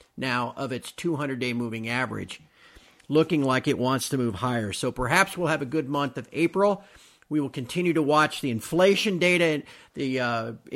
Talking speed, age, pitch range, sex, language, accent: 180 wpm, 50-69, 125-165 Hz, male, English, American